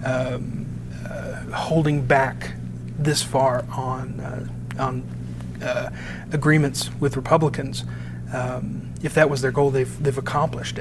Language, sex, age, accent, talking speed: English, male, 40-59, American, 120 wpm